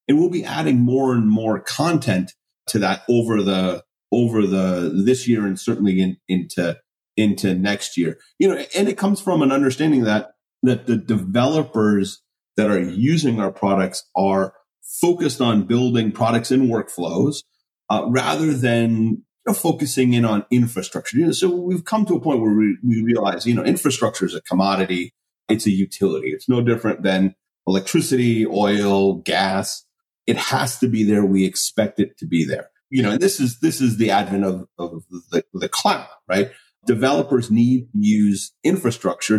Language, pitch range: English, 100-130 Hz